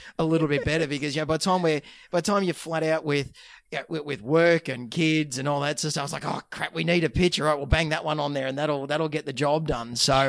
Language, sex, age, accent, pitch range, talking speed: English, male, 30-49, Australian, 130-155 Hz, 320 wpm